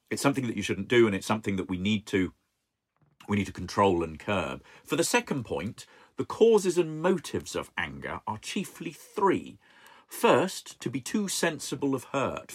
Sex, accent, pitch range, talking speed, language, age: male, British, 95-125 Hz, 185 wpm, English, 40-59